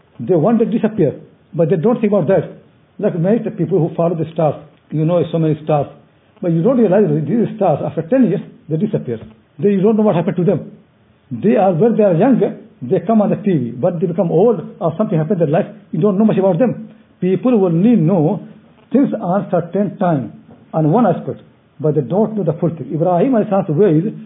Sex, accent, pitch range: male, Indian, 150-200 Hz